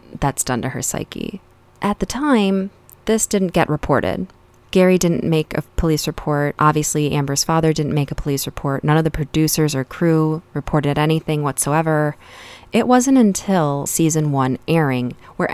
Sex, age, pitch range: female, 20-39, 135-165 Hz